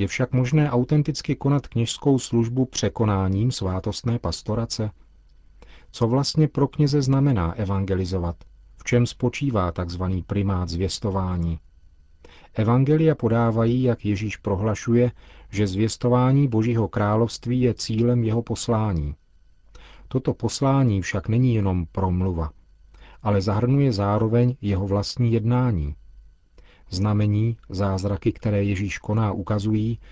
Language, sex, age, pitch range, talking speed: Czech, male, 40-59, 95-120 Hz, 105 wpm